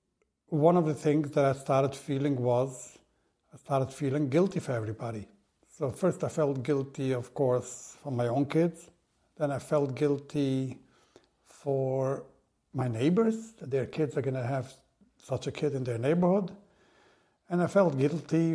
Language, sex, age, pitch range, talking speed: English, male, 60-79, 135-160 Hz, 160 wpm